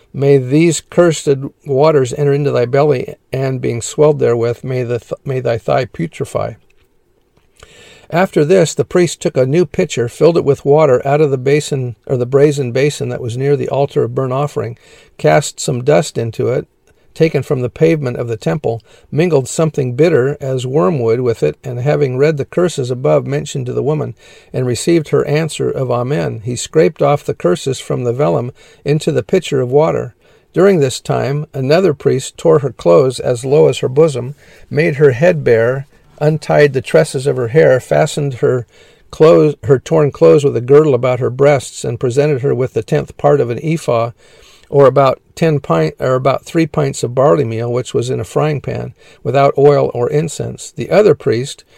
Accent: American